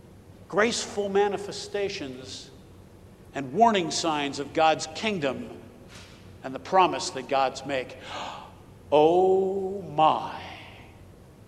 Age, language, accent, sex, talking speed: 60-79, English, American, male, 85 wpm